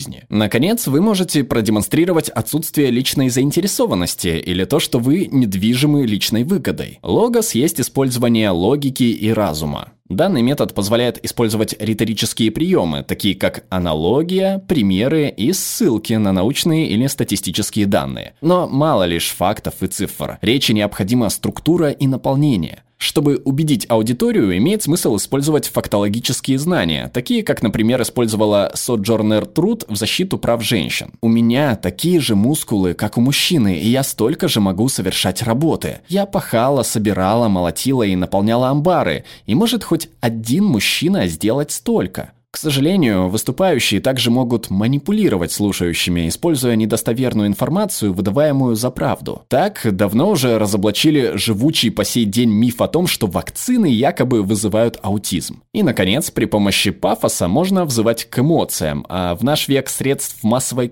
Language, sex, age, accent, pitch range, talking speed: Russian, male, 20-39, native, 105-145 Hz, 135 wpm